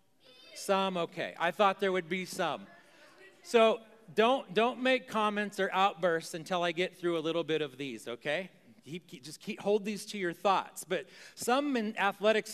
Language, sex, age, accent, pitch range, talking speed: English, male, 40-59, American, 165-220 Hz, 180 wpm